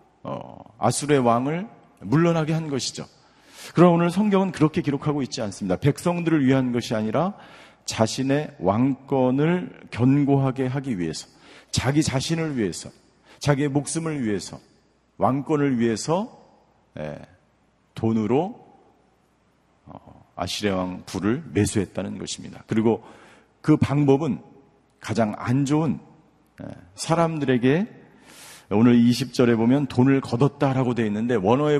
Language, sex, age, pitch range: Korean, male, 50-69, 110-150 Hz